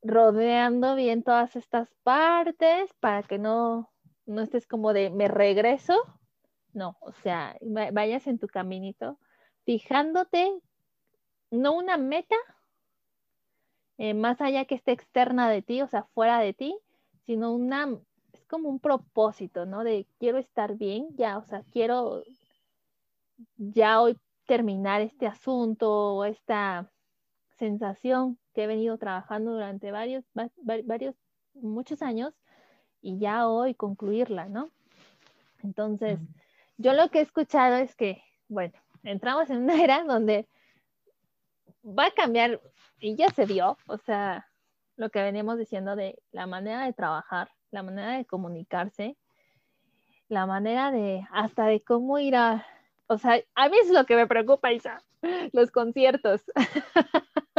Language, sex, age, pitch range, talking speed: Spanish, female, 20-39, 210-265 Hz, 135 wpm